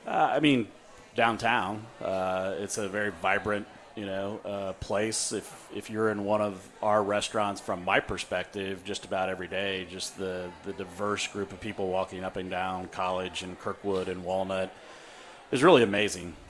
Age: 30-49